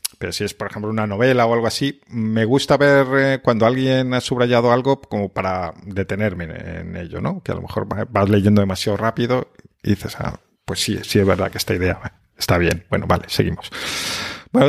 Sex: male